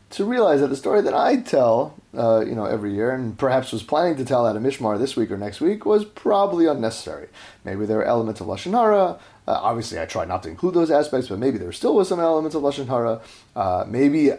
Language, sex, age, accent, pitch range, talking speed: English, male, 30-49, American, 105-150 Hz, 235 wpm